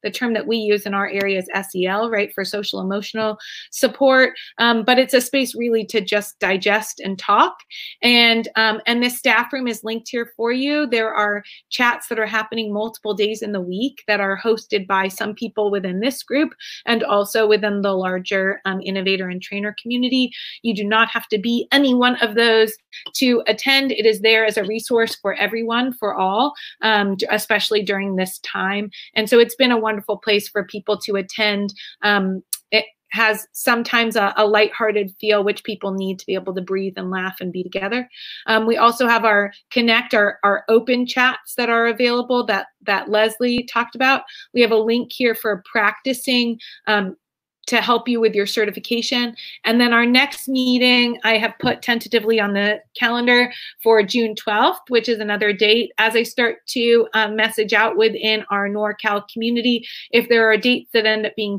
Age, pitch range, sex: 30-49, 205-235 Hz, female